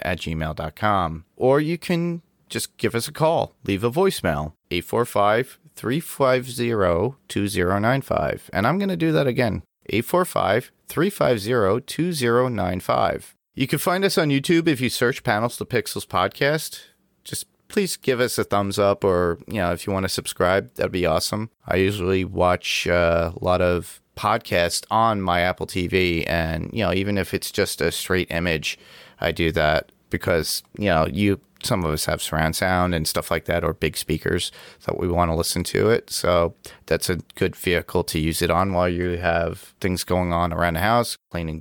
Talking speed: 180 wpm